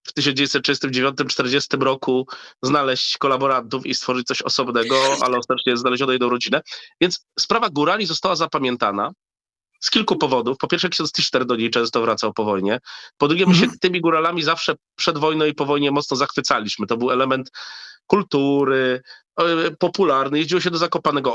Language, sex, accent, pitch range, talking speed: Polish, male, native, 135-175 Hz, 155 wpm